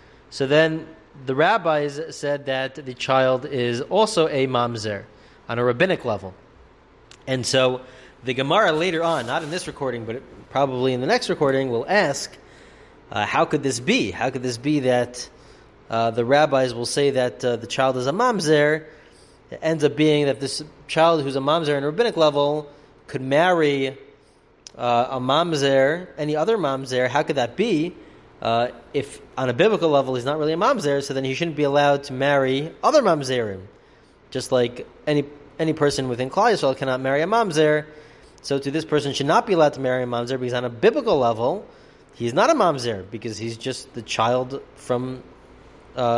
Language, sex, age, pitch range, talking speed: English, male, 20-39, 125-150 Hz, 190 wpm